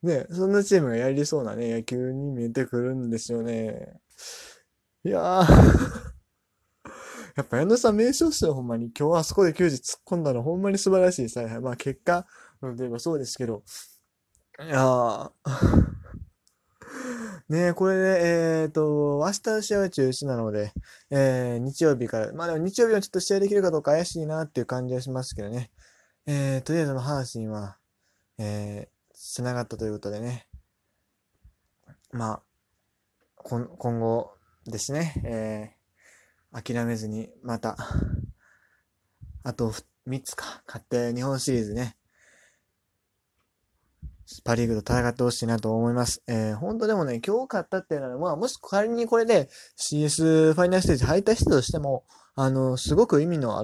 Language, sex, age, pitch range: Japanese, male, 20-39, 115-165 Hz